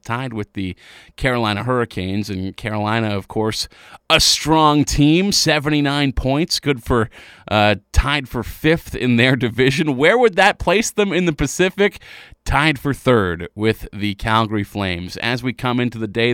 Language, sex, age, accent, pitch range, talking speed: English, male, 30-49, American, 105-140 Hz, 160 wpm